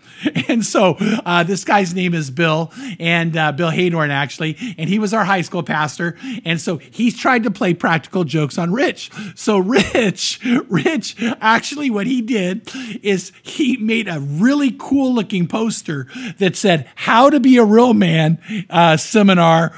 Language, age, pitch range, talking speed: English, 50-69, 190-260 Hz, 165 wpm